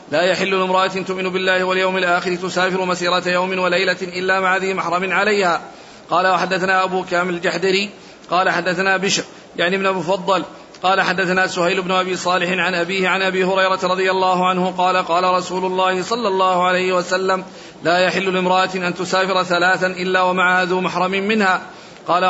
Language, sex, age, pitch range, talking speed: Arabic, male, 40-59, 180-190 Hz, 165 wpm